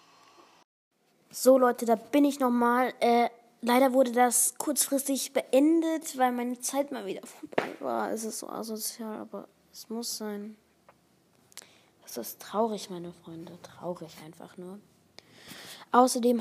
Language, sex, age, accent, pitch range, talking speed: English, female, 20-39, German, 200-240 Hz, 130 wpm